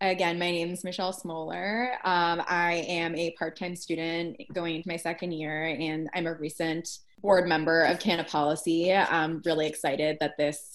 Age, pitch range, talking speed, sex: 20-39, 155-180 Hz, 165 wpm, female